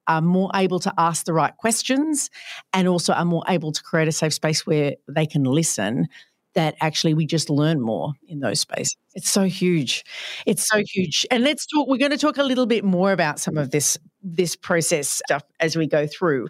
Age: 40-59